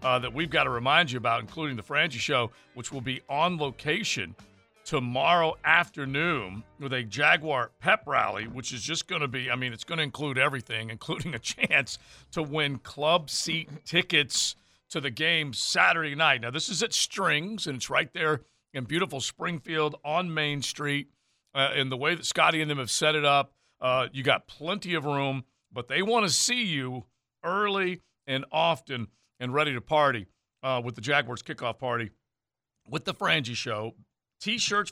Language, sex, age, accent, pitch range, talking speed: English, male, 50-69, American, 125-165 Hz, 185 wpm